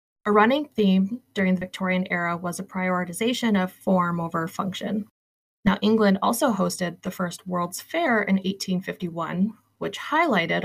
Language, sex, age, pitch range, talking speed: English, female, 20-39, 175-210 Hz, 175 wpm